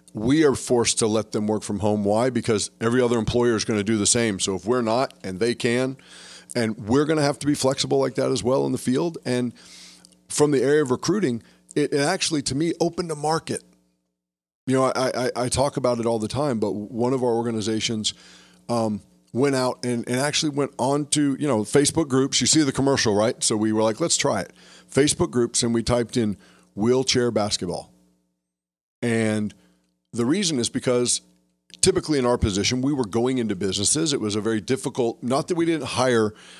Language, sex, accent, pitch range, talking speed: English, male, American, 105-130 Hz, 210 wpm